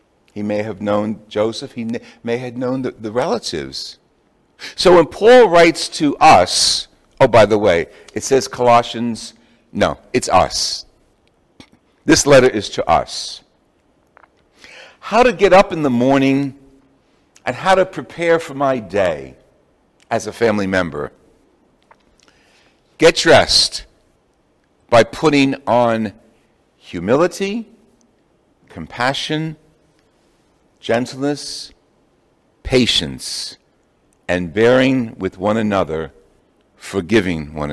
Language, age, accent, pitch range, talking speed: English, 60-79, American, 105-140 Hz, 105 wpm